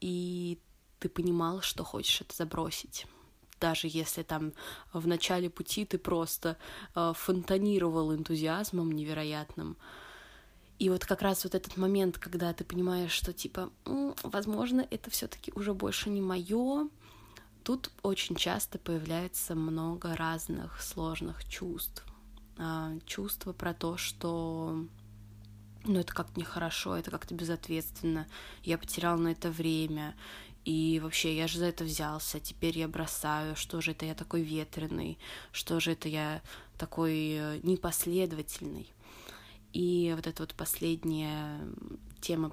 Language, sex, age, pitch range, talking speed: Russian, female, 20-39, 160-180 Hz, 125 wpm